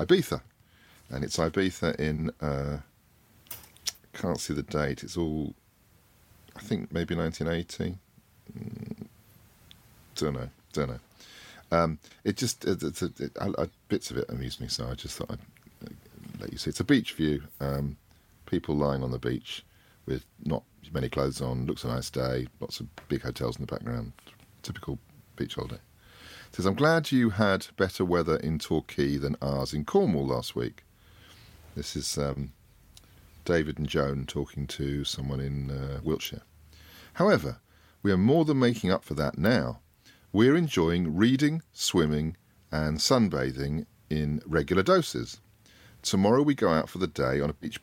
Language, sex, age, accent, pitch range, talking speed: English, male, 40-59, British, 70-95 Hz, 160 wpm